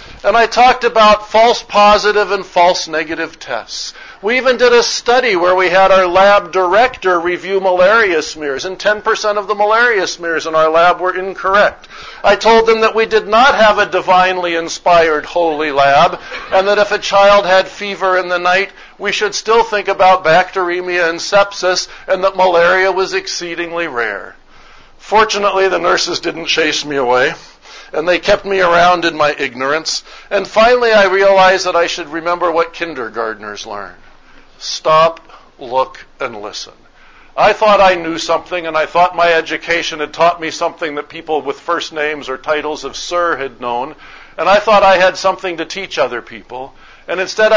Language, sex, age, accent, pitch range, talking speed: English, male, 50-69, American, 160-200 Hz, 175 wpm